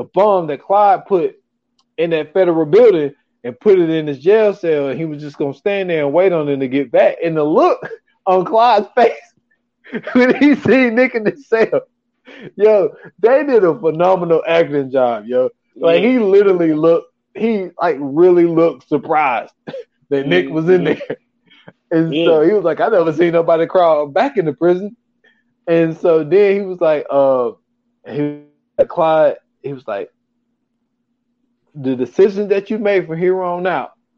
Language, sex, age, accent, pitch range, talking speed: English, male, 20-39, American, 145-235 Hz, 175 wpm